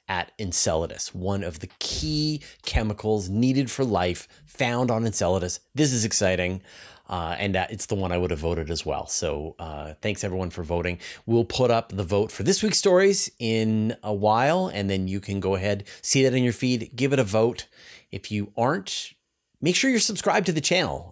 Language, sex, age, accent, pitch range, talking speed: English, male, 30-49, American, 95-135 Hz, 200 wpm